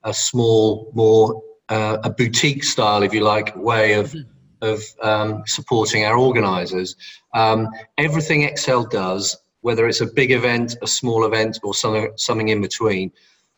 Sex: male